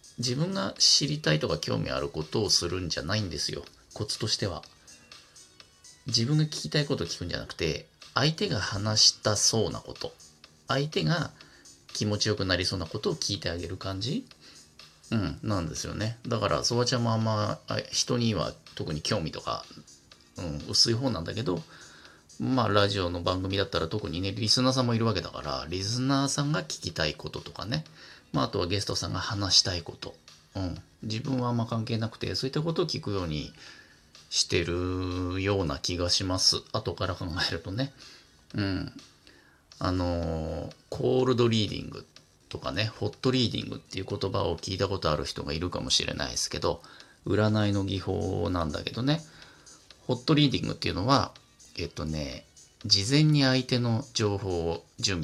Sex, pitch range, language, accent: male, 85-120 Hz, Japanese, native